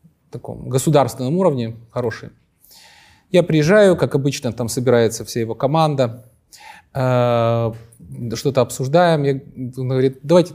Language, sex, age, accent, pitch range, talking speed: Ukrainian, male, 30-49, native, 130-165 Hz, 115 wpm